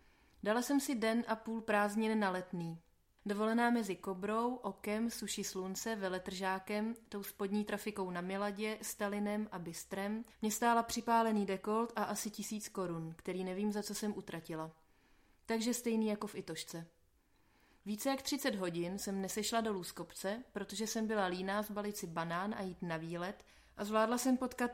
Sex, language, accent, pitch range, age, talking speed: female, Czech, native, 185-220 Hz, 30-49, 165 wpm